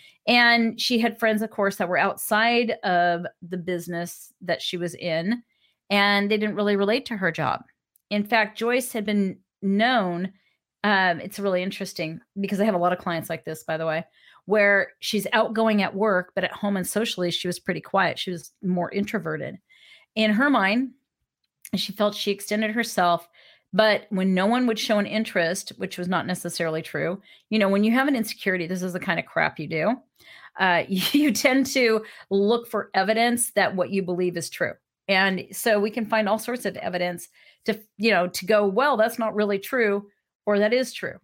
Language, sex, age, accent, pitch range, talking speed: English, female, 40-59, American, 185-225 Hz, 200 wpm